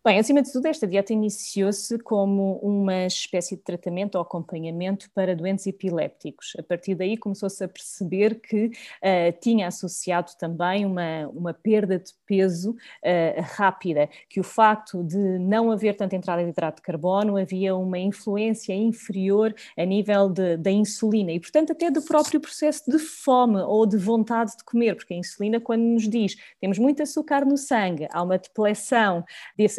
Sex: female